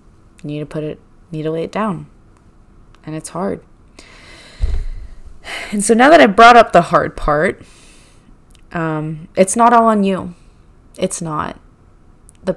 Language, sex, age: English, female, 20-39